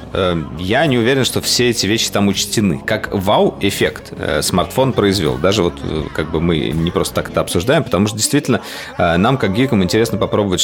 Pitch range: 85-105 Hz